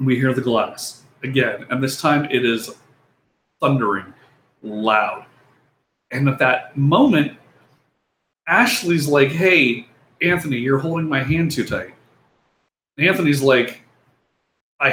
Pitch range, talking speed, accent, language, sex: 135-185 Hz, 120 wpm, American, English, male